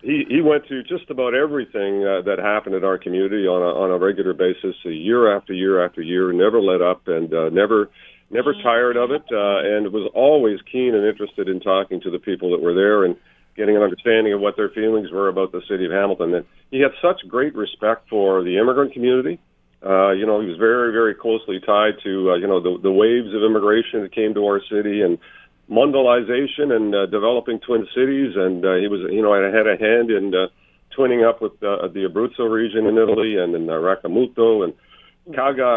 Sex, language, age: male, English, 50-69